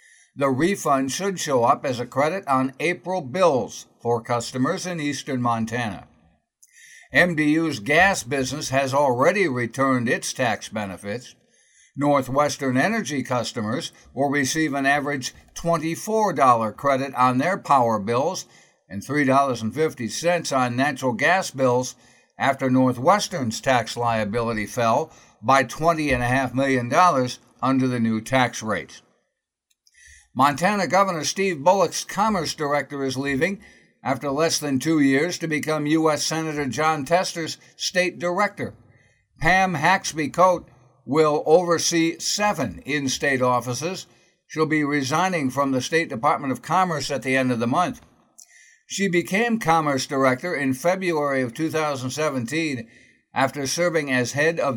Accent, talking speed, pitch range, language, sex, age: American, 125 wpm, 125-165 Hz, English, male, 60-79